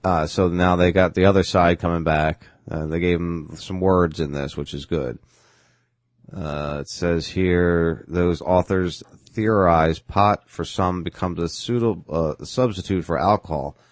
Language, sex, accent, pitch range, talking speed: English, male, American, 80-105 Hz, 165 wpm